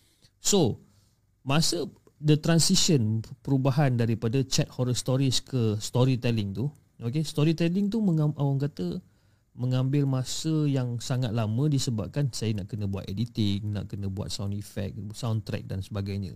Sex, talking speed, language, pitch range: male, 130 wpm, Malay, 110-150 Hz